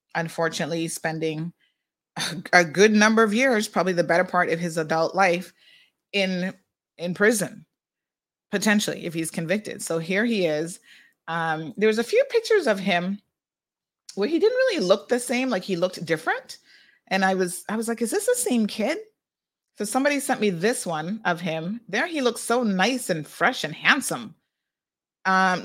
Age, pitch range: 30-49, 175-235 Hz